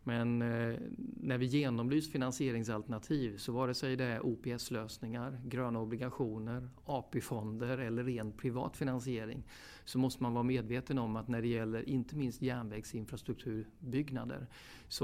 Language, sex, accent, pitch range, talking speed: English, male, Swedish, 115-130 Hz, 130 wpm